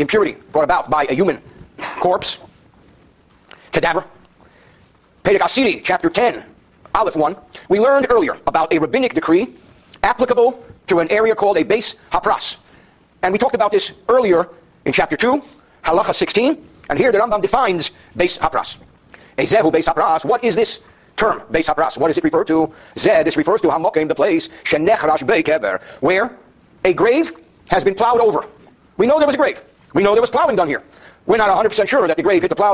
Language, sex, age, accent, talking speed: English, male, 50-69, American, 185 wpm